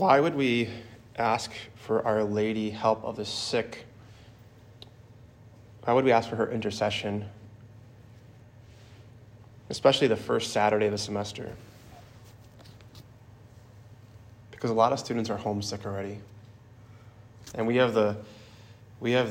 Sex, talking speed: male, 115 wpm